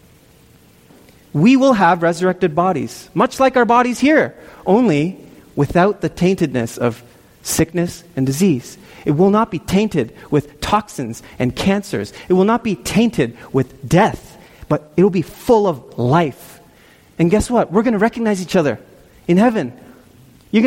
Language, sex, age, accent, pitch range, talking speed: English, male, 30-49, American, 140-230 Hz, 155 wpm